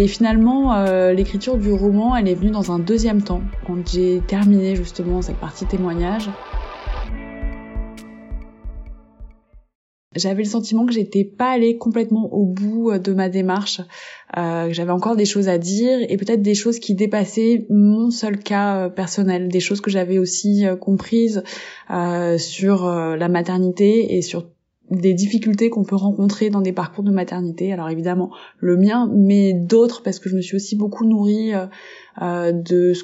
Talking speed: 165 wpm